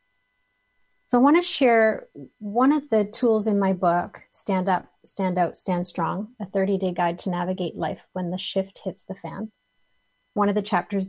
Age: 30-49